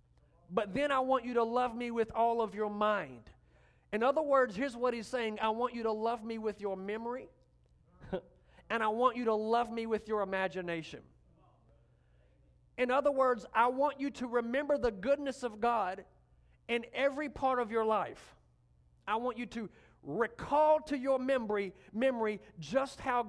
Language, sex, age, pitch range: English, male, 50-69, 195-250 Hz